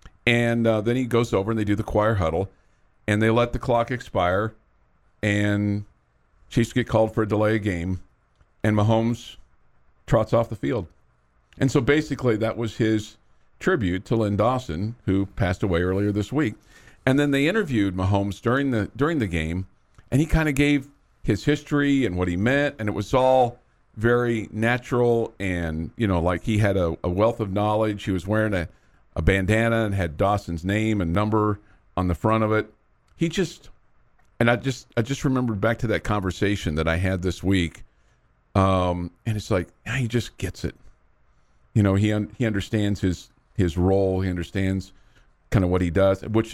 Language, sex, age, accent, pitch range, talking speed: English, male, 50-69, American, 90-115 Hz, 190 wpm